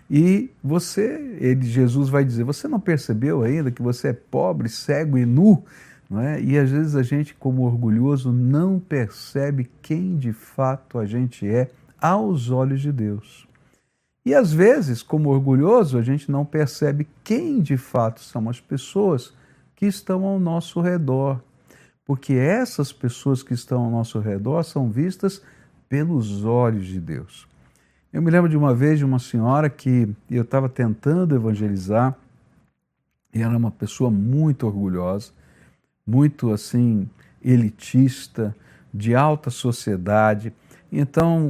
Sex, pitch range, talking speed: male, 120-160 Hz, 145 wpm